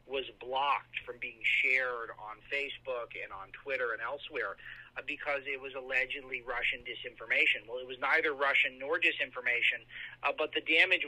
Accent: American